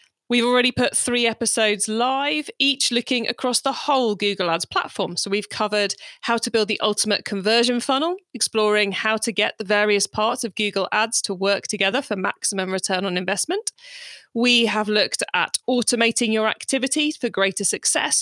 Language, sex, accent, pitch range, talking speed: English, female, British, 200-275 Hz, 170 wpm